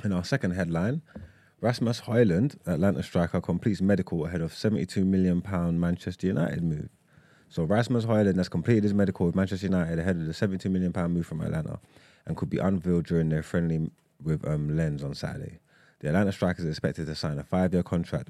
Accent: British